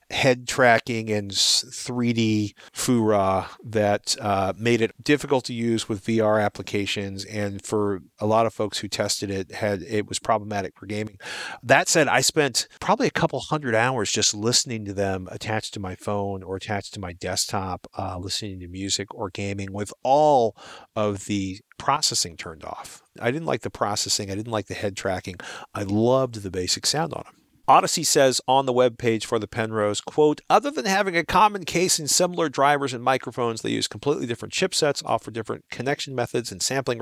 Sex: male